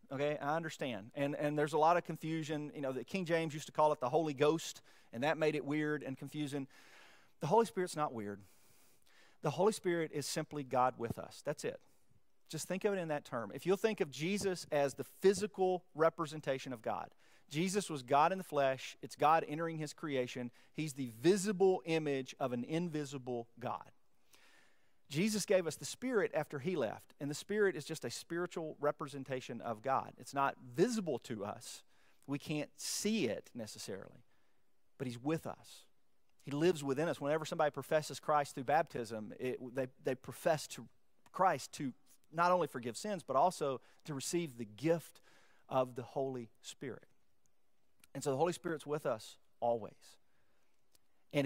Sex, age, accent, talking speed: male, 40-59, American, 175 wpm